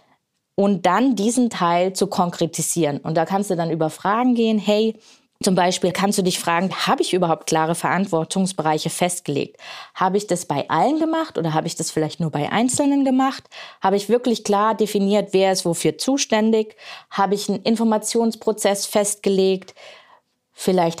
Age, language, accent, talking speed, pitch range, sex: 20-39, German, German, 165 wpm, 170-210 Hz, female